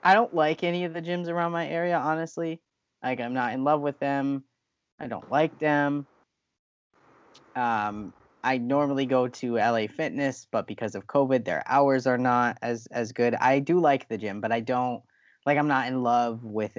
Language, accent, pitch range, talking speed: English, American, 110-140 Hz, 195 wpm